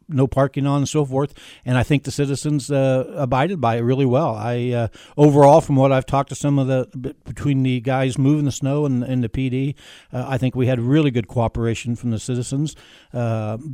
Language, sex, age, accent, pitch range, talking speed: English, male, 60-79, American, 120-140 Hz, 220 wpm